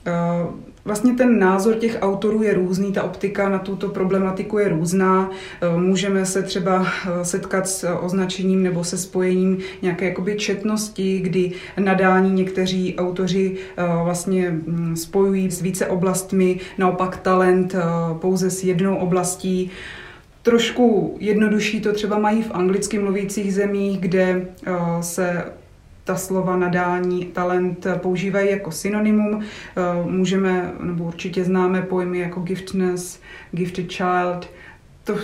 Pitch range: 180-200 Hz